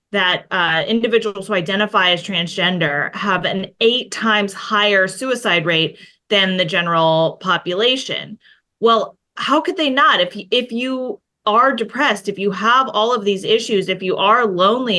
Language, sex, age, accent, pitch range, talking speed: English, female, 30-49, American, 190-235 Hz, 155 wpm